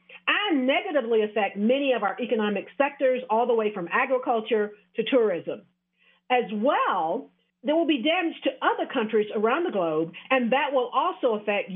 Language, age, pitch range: English, 50-69, 195-275 Hz